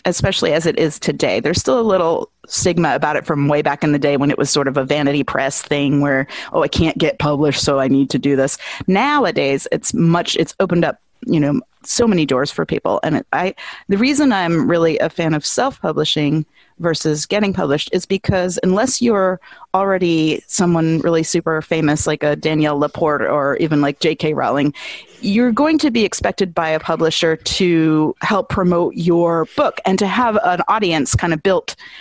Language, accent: English, American